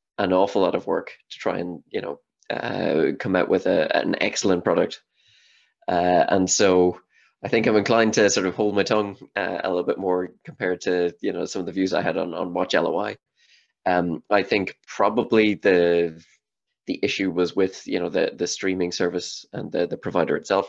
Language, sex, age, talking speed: English, male, 20-39, 205 wpm